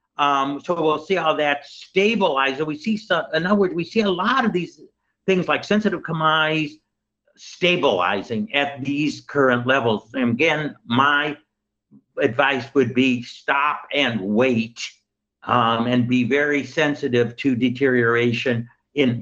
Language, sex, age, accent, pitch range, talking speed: English, male, 60-79, American, 120-155 Hz, 140 wpm